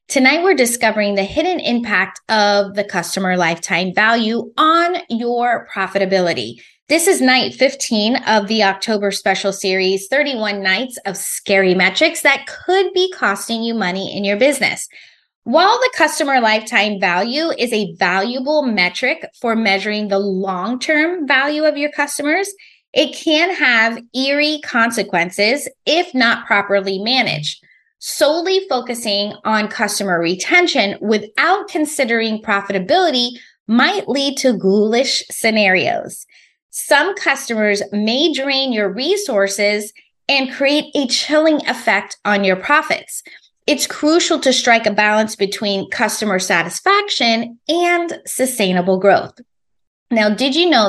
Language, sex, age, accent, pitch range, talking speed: English, female, 20-39, American, 200-290 Hz, 125 wpm